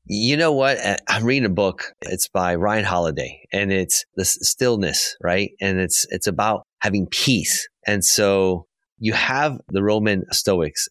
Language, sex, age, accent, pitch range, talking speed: English, male, 30-49, American, 95-125 Hz, 160 wpm